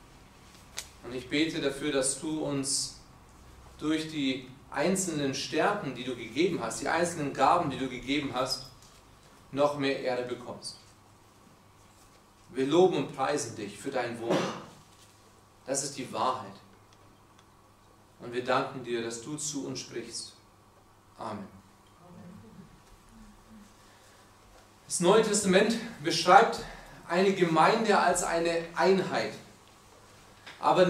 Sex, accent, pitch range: male, German, 110-185 Hz